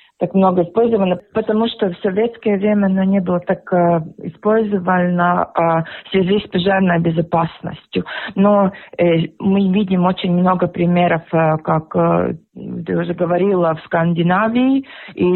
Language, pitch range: Russian, 170-210 Hz